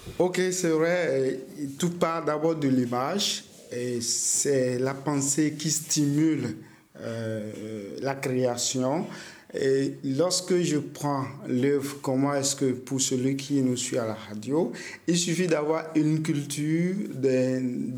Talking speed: 135 wpm